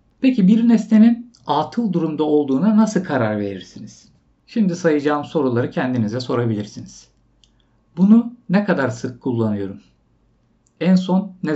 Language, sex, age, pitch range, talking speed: Turkish, male, 50-69, 130-185 Hz, 115 wpm